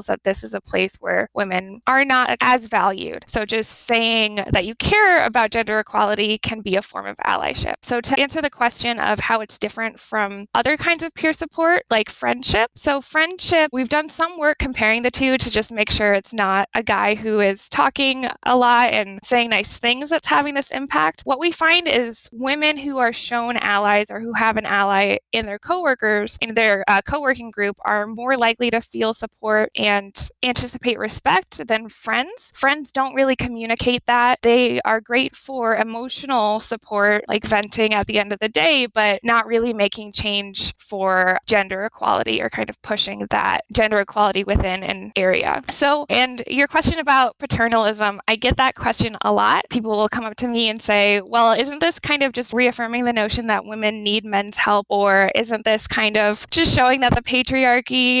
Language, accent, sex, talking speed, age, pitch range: English, American, female, 195 wpm, 20-39, 210-255 Hz